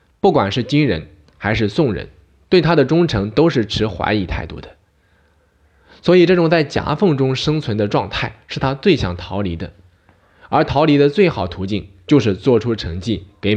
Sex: male